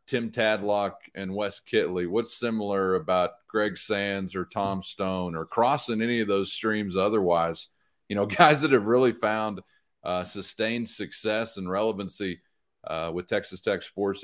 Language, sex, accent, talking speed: English, male, American, 155 wpm